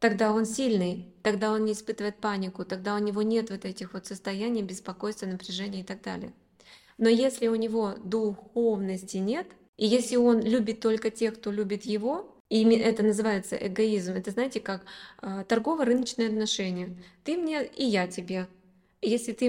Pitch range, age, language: 195-230 Hz, 20-39, Russian